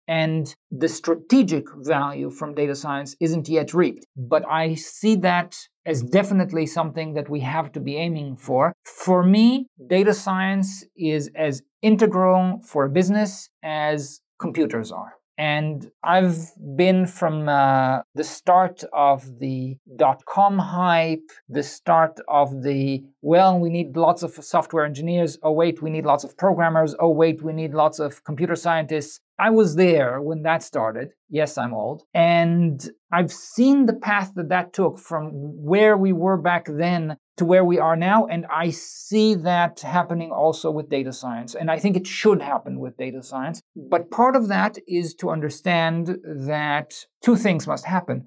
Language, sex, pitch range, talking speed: English, male, 150-180 Hz, 165 wpm